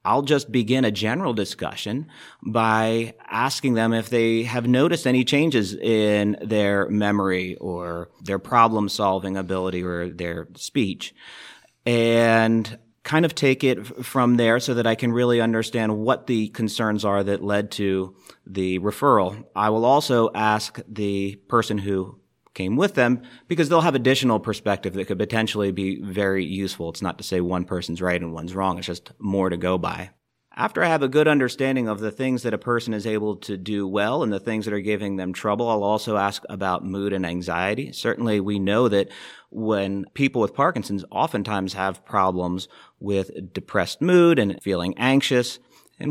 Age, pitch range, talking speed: 30-49, 95-115 Hz, 175 wpm